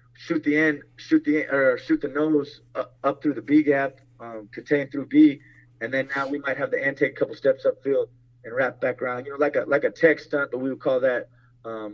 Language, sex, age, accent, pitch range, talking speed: English, male, 30-49, American, 120-155 Hz, 245 wpm